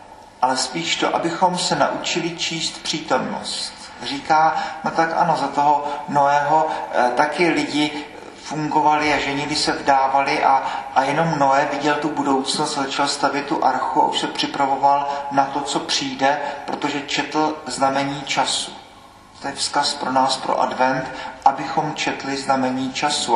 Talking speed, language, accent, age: 145 wpm, Czech, native, 40-59